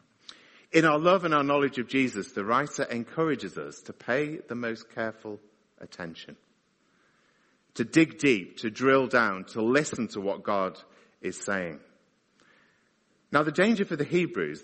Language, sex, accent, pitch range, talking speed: English, male, British, 95-135 Hz, 150 wpm